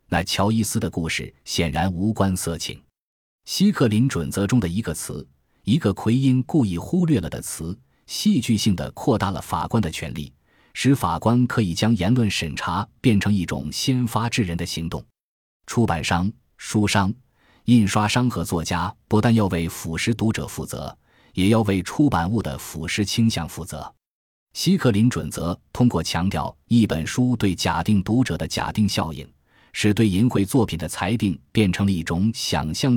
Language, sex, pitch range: Chinese, male, 85-115 Hz